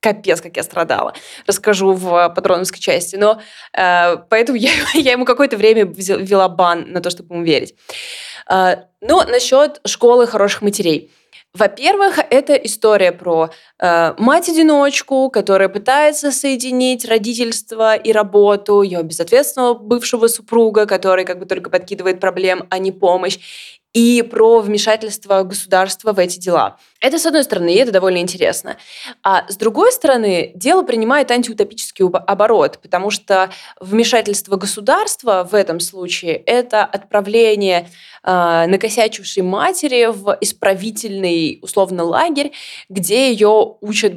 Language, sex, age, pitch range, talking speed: Russian, female, 20-39, 185-235 Hz, 125 wpm